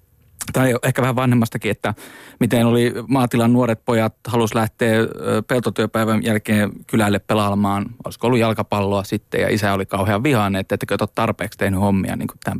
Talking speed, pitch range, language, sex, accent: 155 wpm, 105-125 Hz, Finnish, male, native